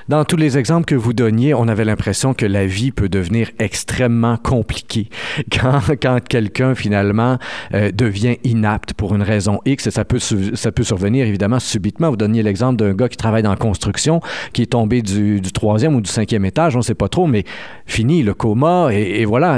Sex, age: male, 50-69